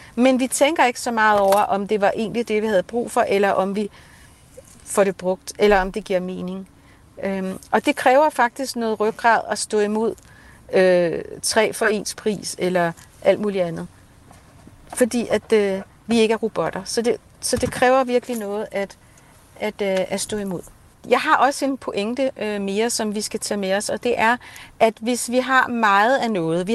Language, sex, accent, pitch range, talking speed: Danish, female, native, 195-245 Hz, 185 wpm